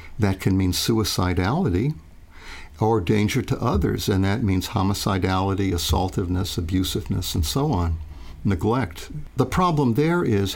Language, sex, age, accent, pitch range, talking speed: Swedish, male, 60-79, American, 85-105 Hz, 125 wpm